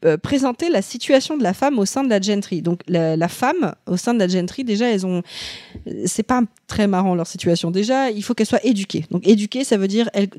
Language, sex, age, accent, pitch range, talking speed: French, female, 20-39, French, 180-225 Hz, 245 wpm